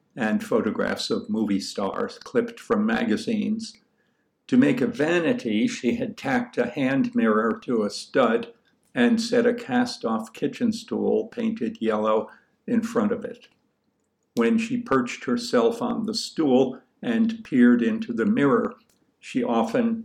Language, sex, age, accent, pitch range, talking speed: English, male, 60-79, American, 220-245 Hz, 140 wpm